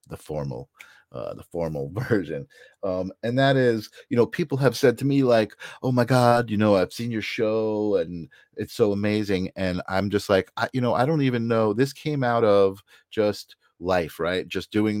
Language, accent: English, American